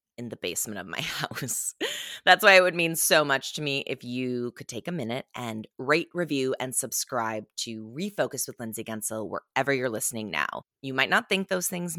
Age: 20-39